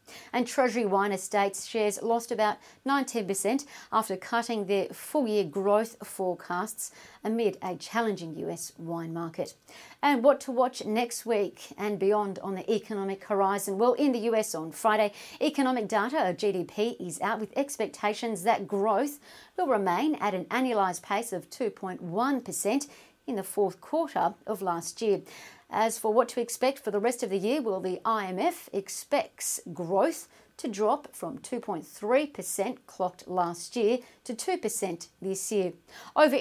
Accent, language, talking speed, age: Australian, English, 150 wpm, 40-59